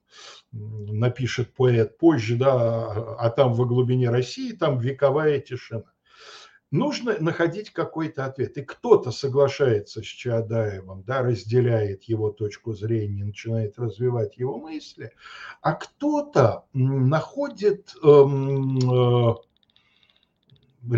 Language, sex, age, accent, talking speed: Russian, male, 60-79, native, 100 wpm